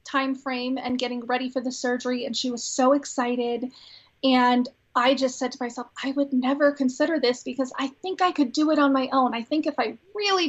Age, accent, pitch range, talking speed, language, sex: 30-49, American, 250-280 Hz, 225 wpm, English, female